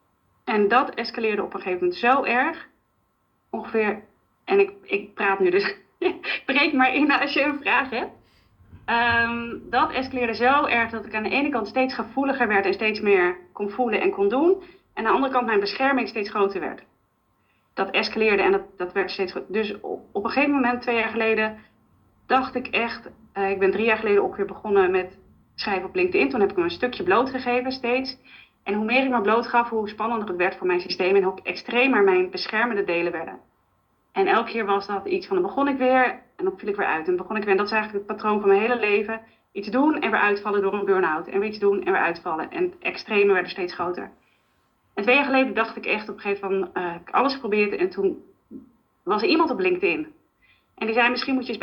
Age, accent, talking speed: 30-49, Dutch, 230 wpm